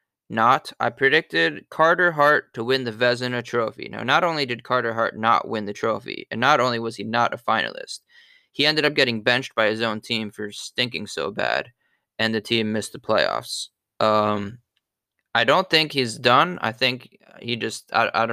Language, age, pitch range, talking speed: English, 20-39, 110-125 Hz, 195 wpm